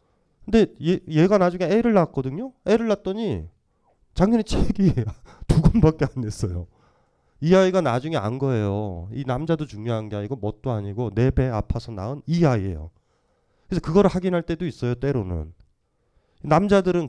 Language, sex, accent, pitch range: Korean, male, native, 110-160 Hz